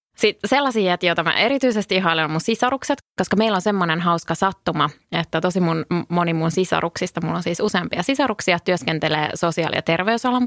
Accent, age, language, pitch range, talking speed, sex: Finnish, 20-39, English, 160-195 Hz, 160 wpm, female